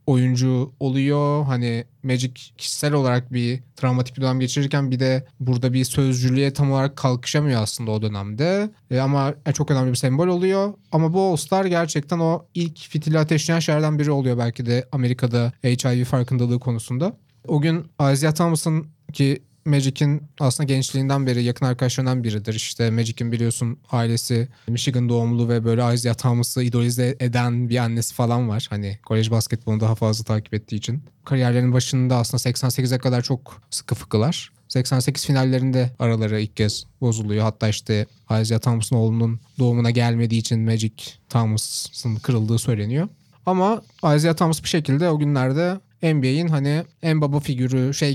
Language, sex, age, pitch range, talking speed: Turkish, male, 30-49, 120-150 Hz, 150 wpm